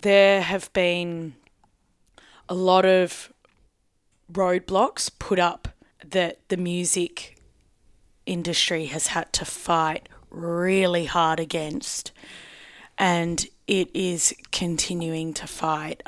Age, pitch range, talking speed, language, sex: 20-39, 160-185 Hz, 95 wpm, English, female